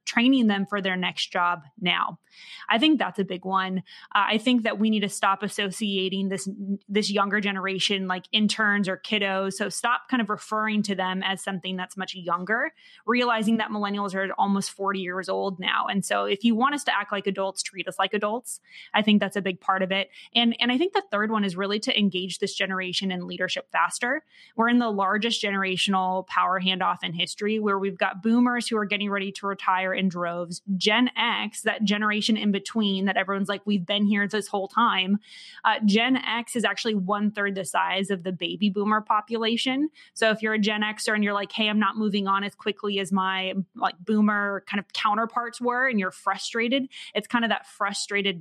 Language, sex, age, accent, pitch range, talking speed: English, female, 20-39, American, 190-220 Hz, 210 wpm